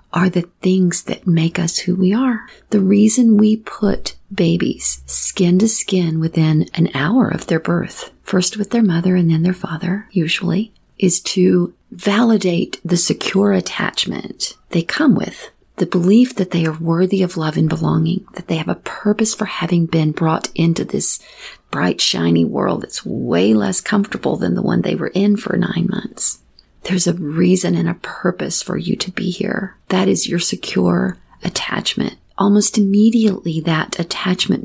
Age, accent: 40-59, American